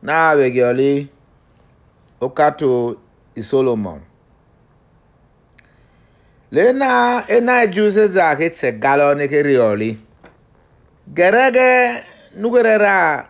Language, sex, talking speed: English, male, 90 wpm